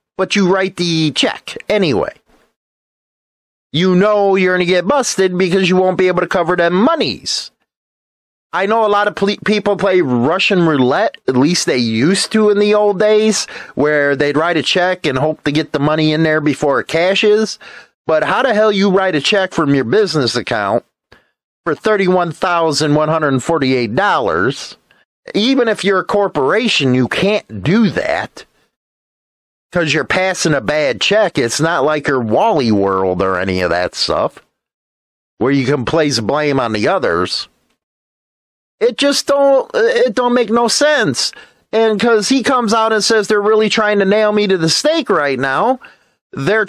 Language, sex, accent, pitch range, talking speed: English, male, American, 155-215 Hz, 170 wpm